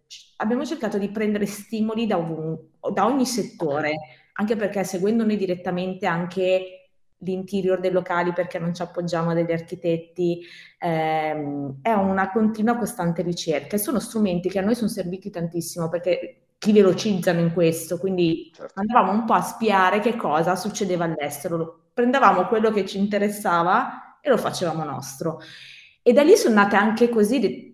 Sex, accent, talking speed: female, native, 155 wpm